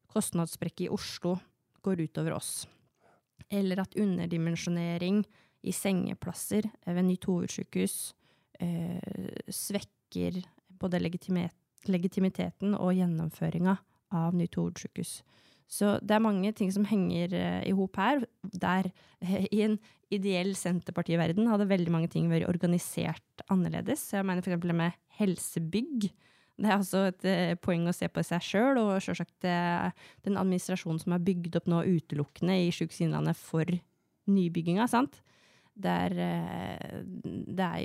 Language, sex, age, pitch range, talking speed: English, female, 20-39, 170-195 Hz, 140 wpm